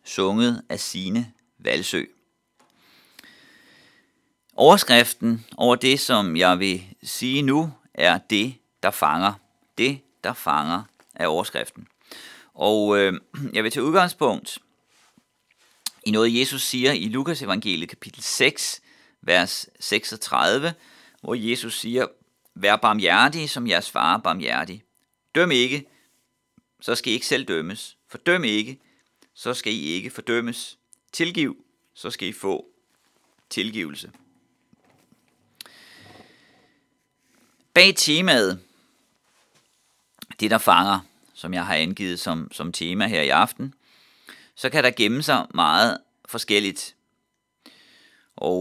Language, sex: Danish, male